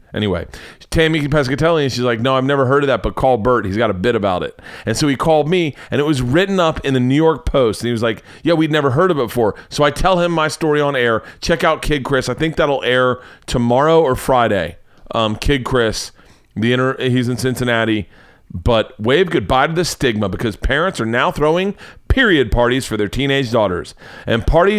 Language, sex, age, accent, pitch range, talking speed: English, male, 40-59, American, 110-150 Hz, 225 wpm